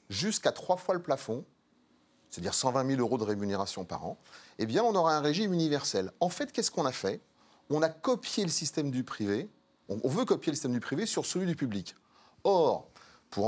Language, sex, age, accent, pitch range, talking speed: French, male, 30-49, French, 110-160 Hz, 205 wpm